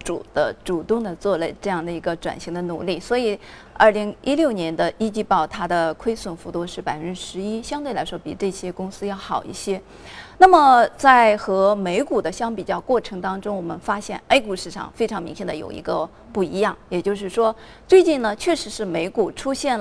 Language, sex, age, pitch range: Chinese, female, 20-39, 175-220 Hz